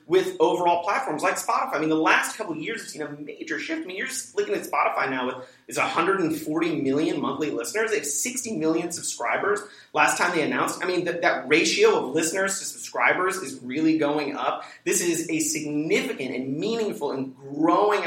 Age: 30-49